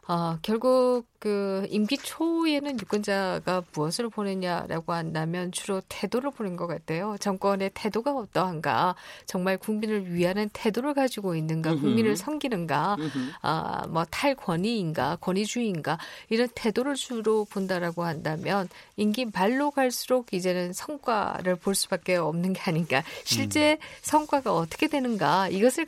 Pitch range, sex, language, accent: 180-240 Hz, female, Korean, native